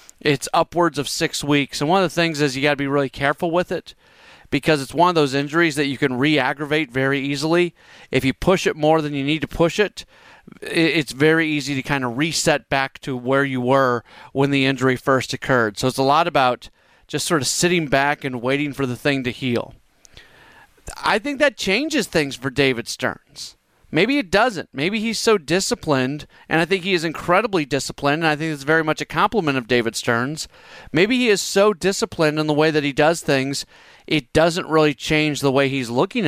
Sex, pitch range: male, 140-175 Hz